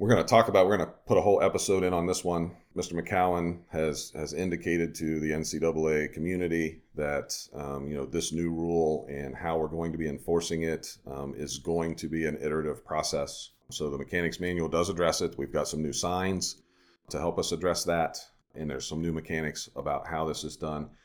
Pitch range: 75-85 Hz